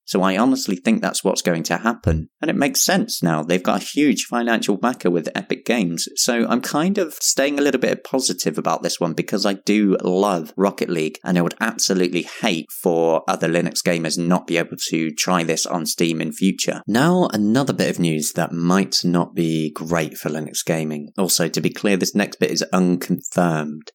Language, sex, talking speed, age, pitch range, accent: English, male, 205 wpm, 30-49, 85-120 Hz, British